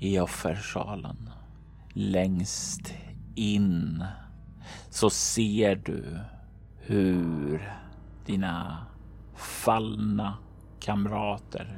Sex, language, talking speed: male, Swedish, 55 wpm